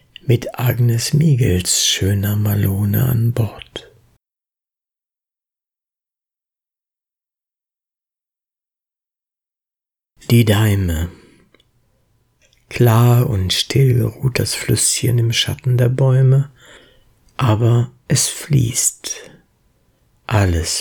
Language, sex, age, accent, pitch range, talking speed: German, male, 60-79, German, 100-125 Hz, 65 wpm